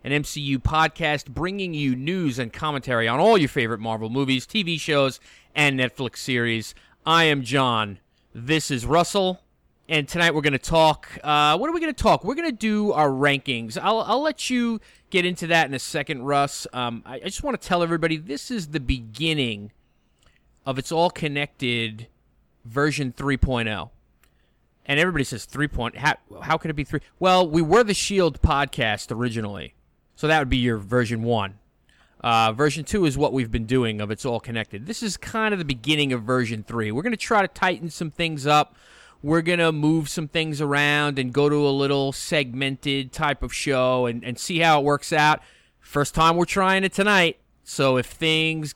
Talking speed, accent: 195 wpm, American